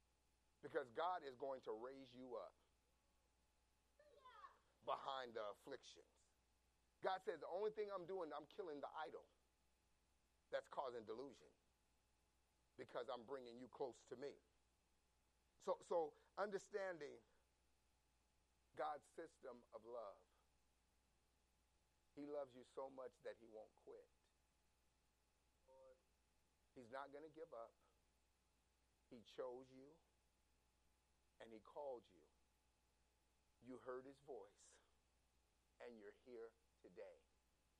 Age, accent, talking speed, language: 40-59, American, 110 wpm, English